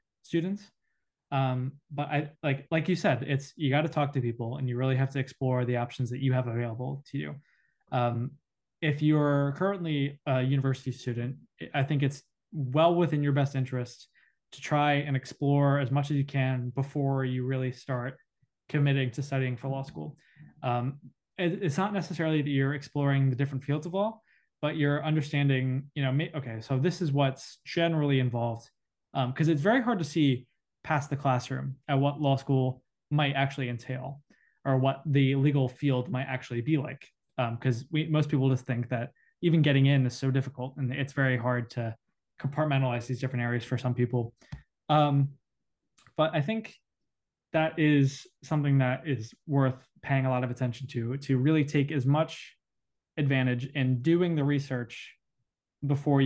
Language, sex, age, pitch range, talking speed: English, male, 20-39, 130-145 Hz, 180 wpm